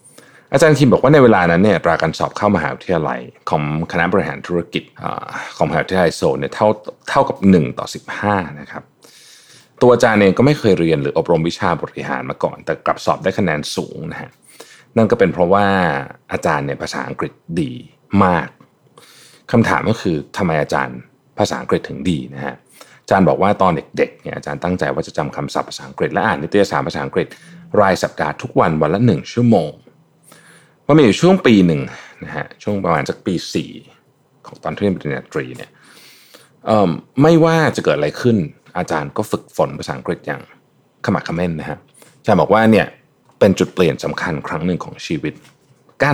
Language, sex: Thai, male